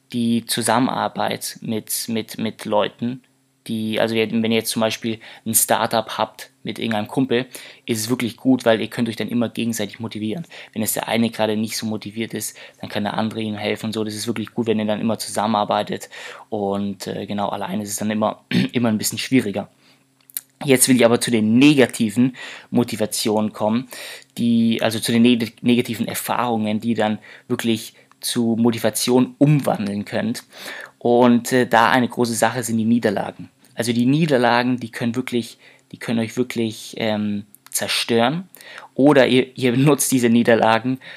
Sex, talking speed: male, 170 wpm